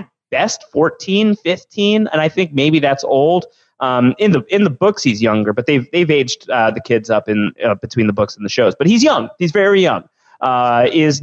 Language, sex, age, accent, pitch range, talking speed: English, male, 30-49, American, 125-175 Hz, 220 wpm